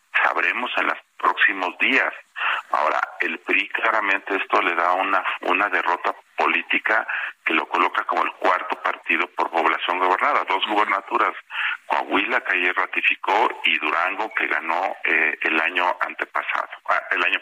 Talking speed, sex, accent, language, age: 145 wpm, male, Mexican, Spanish, 40-59